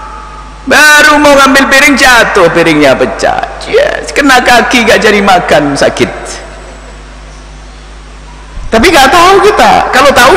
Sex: male